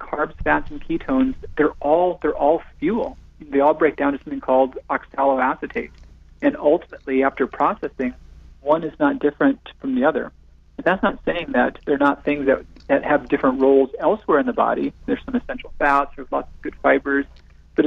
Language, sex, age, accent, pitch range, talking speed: English, male, 40-59, American, 130-175 Hz, 185 wpm